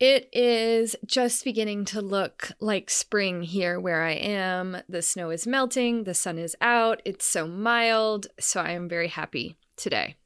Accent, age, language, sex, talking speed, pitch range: American, 20-39, English, female, 170 wpm, 180-240 Hz